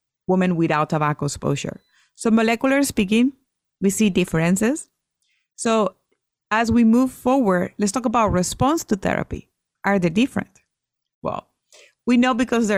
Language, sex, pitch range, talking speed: English, female, 175-230 Hz, 135 wpm